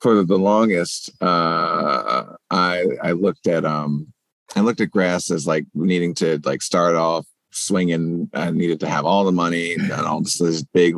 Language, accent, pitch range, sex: English, American, 80-90 Hz, male